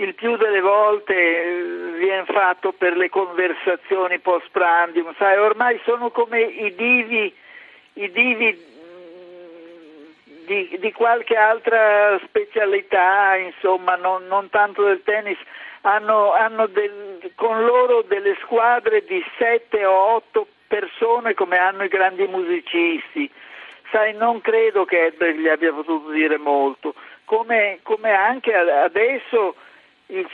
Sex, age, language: male, 60-79, Italian